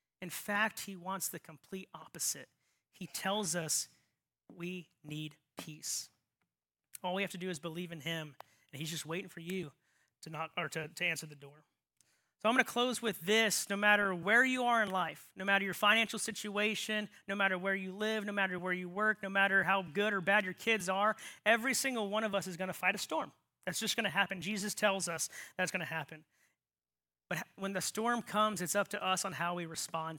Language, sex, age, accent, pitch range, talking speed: English, male, 30-49, American, 165-205 Hz, 220 wpm